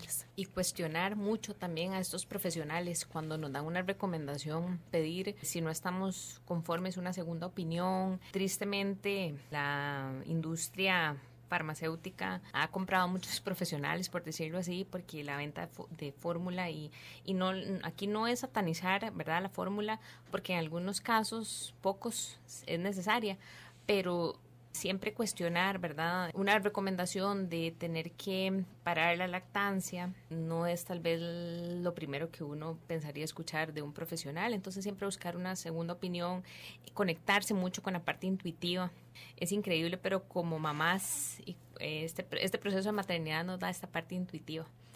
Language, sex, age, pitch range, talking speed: Spanish, female, 20-39, 165-195 Hz, 140 wpm